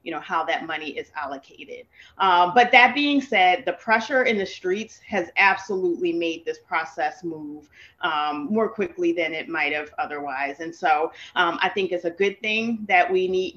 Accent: American